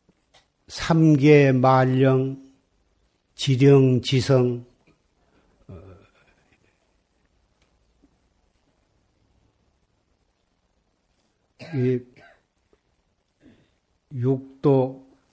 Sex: male